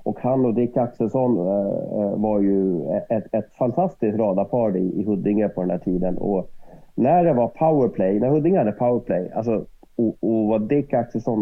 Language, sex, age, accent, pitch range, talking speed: Swedish, male, 30-49, native, 100-120 Hz, 165 wpm